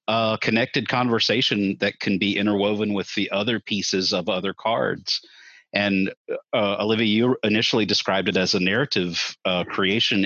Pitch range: 90-105 Hz